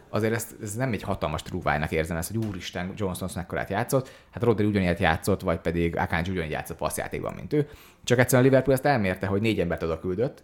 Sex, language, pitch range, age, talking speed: male, Hungarian, 90-110 Hz, 30-49, 215 wpm